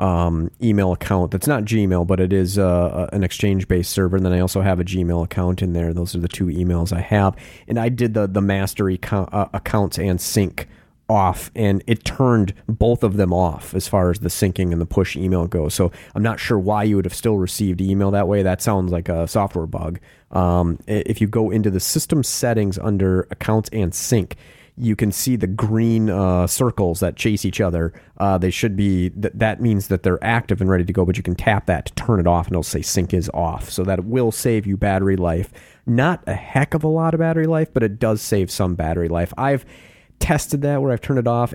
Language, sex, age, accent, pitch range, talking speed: English, male, 30-49, American, 90-110 Hz, 235 wpm